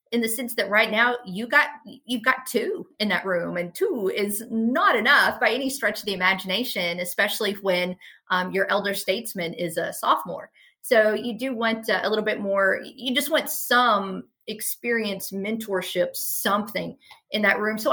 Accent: American